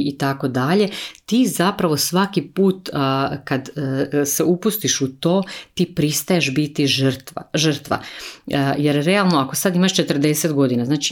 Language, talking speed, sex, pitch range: Croatian, 135 wpm, female, 135-170 Hz